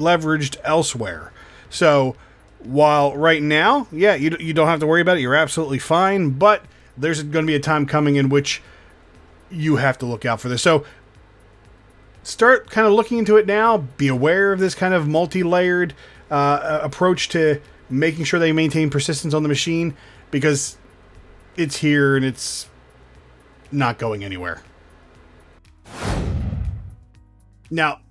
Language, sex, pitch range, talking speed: English, male, 115-160 Hz, 145 wpm